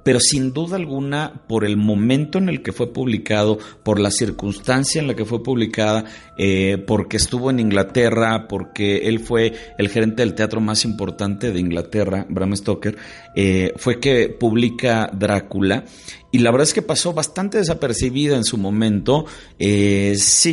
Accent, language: Mexican, Spanish